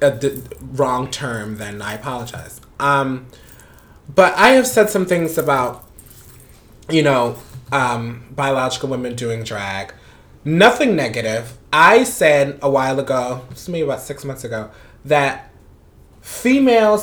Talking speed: 125 wpm